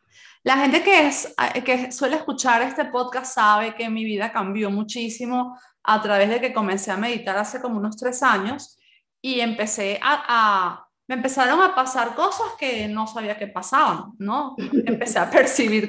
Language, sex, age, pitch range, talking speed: Spanish, female, 20-39, 225-290 Hz, 170 wpm